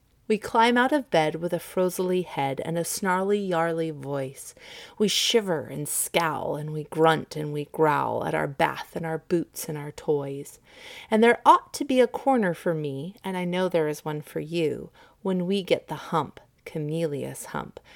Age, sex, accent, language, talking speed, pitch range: 30-49, female, American, English, 185 wpm, 155-230 Hz